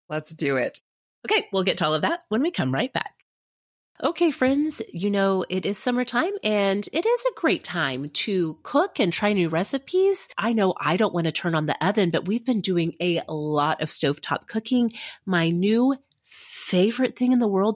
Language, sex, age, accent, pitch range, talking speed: English, female, 30-49, American, 160-235 Hz, 205 wpm